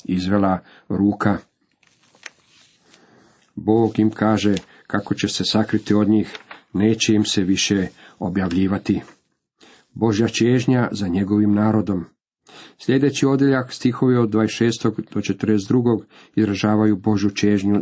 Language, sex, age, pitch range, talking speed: Croatian, male, 40-59, 100-115 Hz, 105 wpm